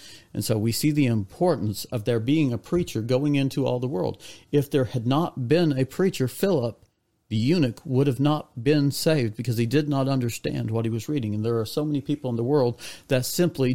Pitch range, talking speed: 120-155 Hz, 225 wpm